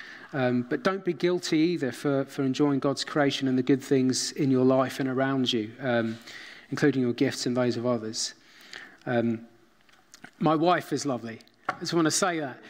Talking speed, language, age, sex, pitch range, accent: 190 wpm, English, 30-49, male, 125-160 Hz, British